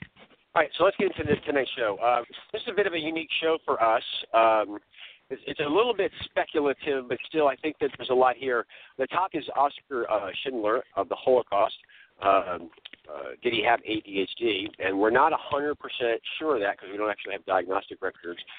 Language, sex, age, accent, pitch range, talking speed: English, male, 40-59, American, 105-160 Hz, 210 wpm